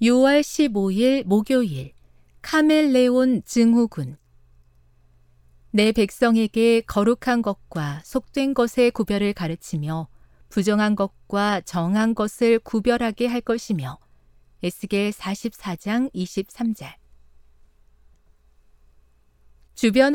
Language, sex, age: Korean, female, 40-59